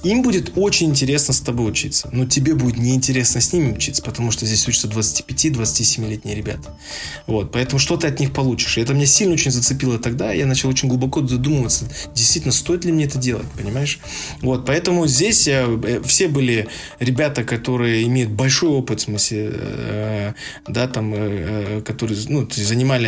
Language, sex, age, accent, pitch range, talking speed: Russian, male, 20-39, native, 110-135 Hz, 160 wpm